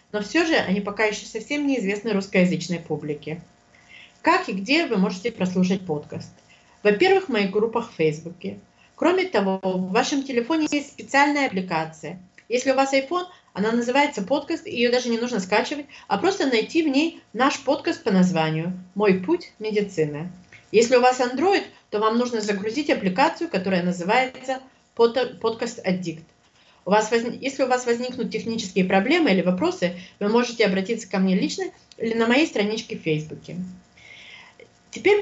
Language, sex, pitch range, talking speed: English, female, 185-280 Hz, 155 wpm